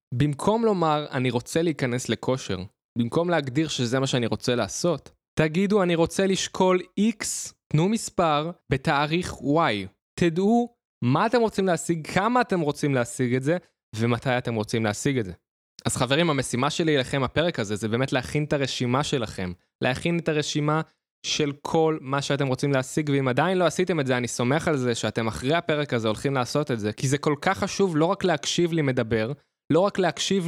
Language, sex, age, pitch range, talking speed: Hebrew, male, 20-39, 130-180 Hz, 175 wpm